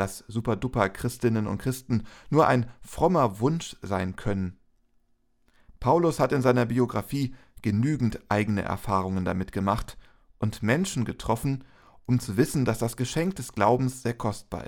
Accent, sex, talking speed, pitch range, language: German, male, 140 wpm, 105-135 Hz, German